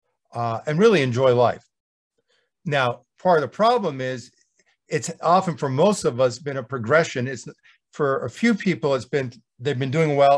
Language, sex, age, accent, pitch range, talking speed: English, male, 50-69, American, 120-155 Hz, 180 wpm